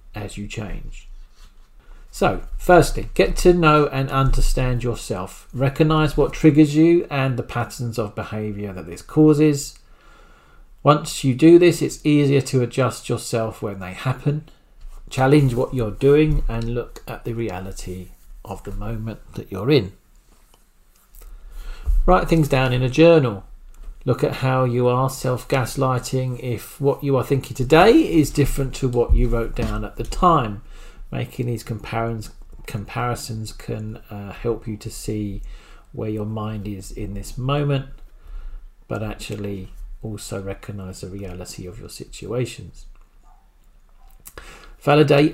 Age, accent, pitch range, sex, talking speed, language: 40-59, British, 105-140 Hz, male, 135 wpm, English